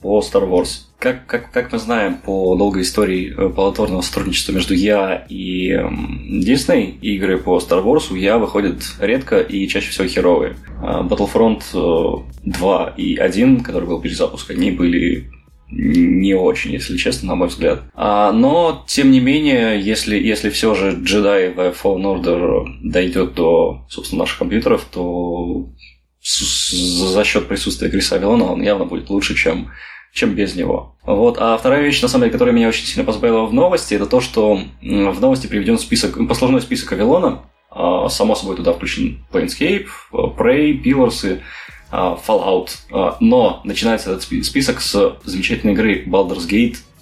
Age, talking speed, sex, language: 20-39, 155 wpm, male, Russian